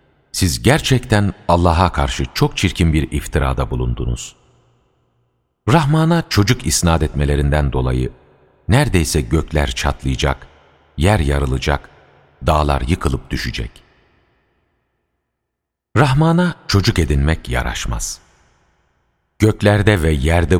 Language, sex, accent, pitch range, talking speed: Turkish, male, native, 70-110 Hz, 85 wpm